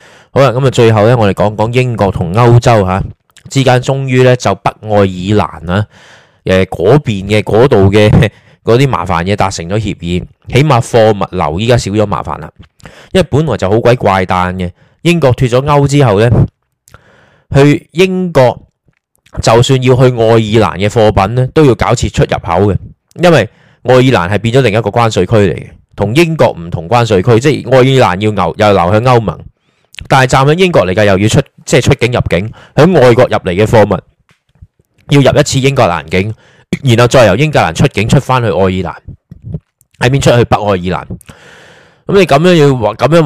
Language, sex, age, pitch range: Chinese, male, 20-39, 100-135 Hz